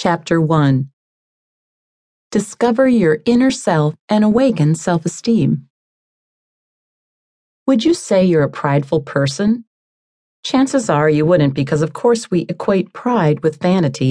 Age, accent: 40-59, American